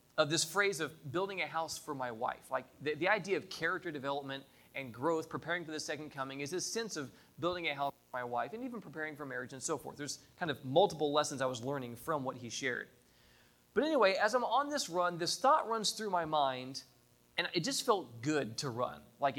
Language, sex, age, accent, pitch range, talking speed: English, male, 20-39, American, 125-175 Hz, 230 wpm